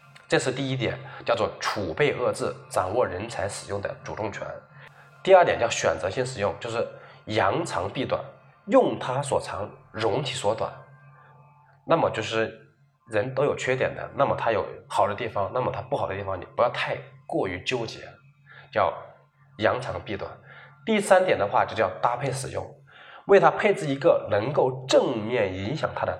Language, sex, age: Chinese, male, 20-39